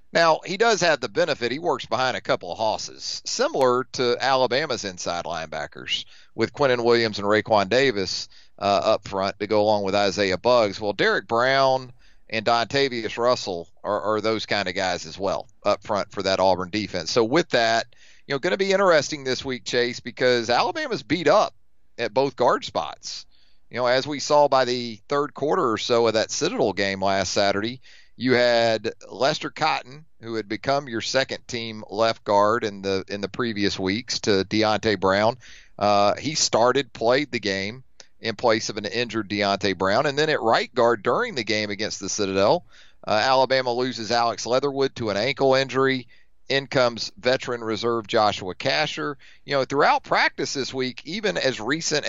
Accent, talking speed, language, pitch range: American, 180 wpm, English, 100-130 Hz